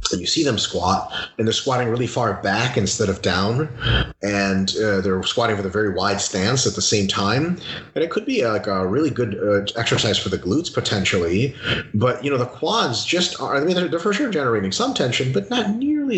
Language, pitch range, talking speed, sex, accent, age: English, 95-125 Hz, 225 wpm, male, American, 30-49